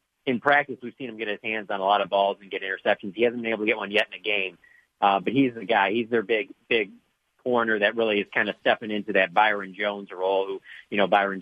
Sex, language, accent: male, English, American